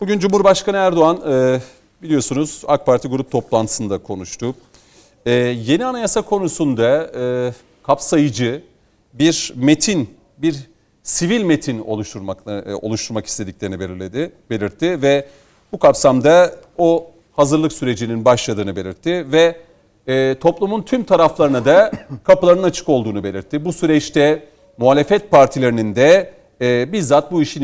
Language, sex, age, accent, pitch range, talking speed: Turkish, male, 40-59, native, 125-165 Hz, 100 wpm